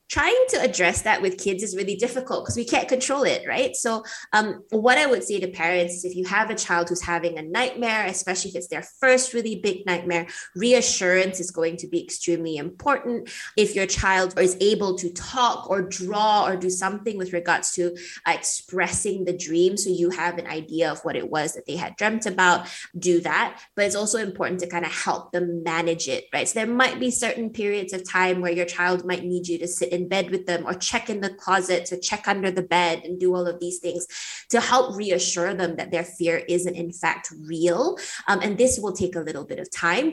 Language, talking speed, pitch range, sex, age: English, 225 wpm, 175-215 Hz, female, 20-39